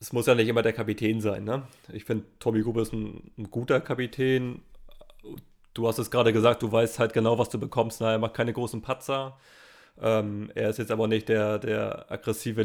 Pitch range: 110-120 Hz